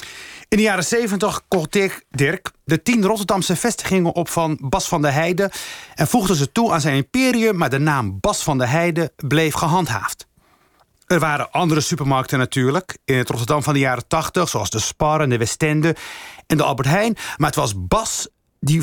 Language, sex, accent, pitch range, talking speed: Dutch, male, Dutch, 140-180 Hz, 190 wpm